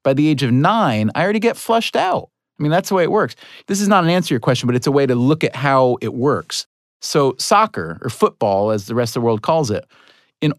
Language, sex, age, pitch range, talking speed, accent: English, male, 40-59, 115-155 Hz, 270 wpm, American